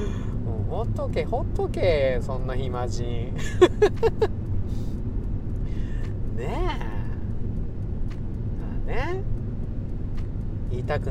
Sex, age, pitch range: male, 40-59, 105-120 Hz